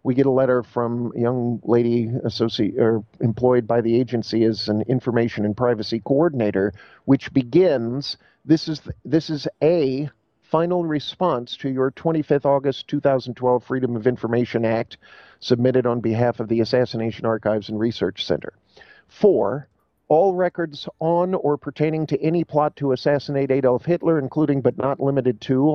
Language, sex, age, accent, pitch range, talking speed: English, male, 50-69, American, 120-150 Hz, 155 wpm